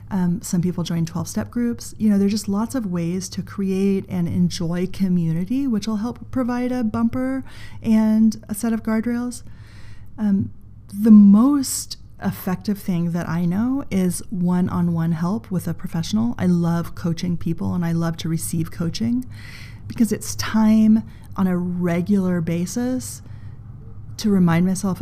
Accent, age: American, 30-49